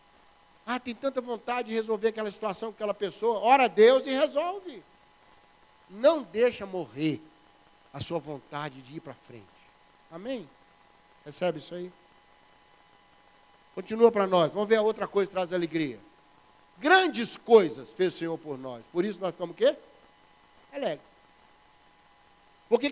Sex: male